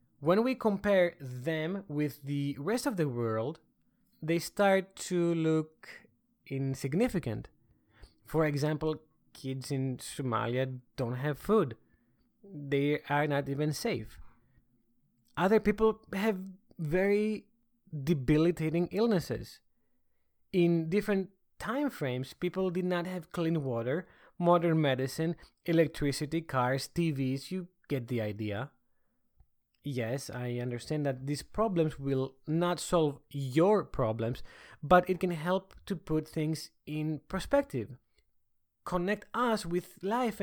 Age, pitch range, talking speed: 20-39, 130-185 Hz, 115 wpm